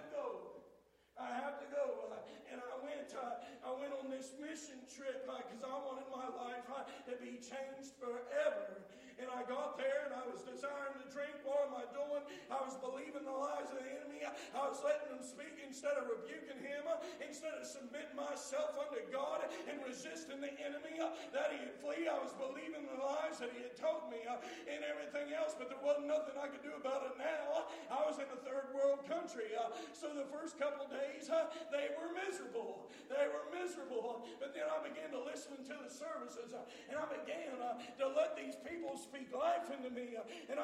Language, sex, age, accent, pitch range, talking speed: English, male, 40-59, American, 255-305 Hz, 200 wpm